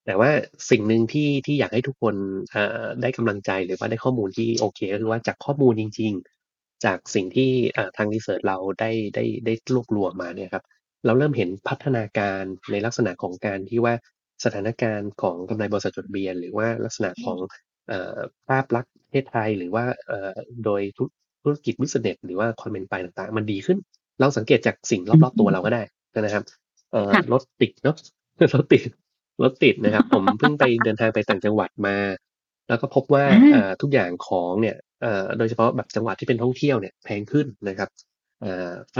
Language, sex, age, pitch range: Thai, male, 20-39, 105-130 Hz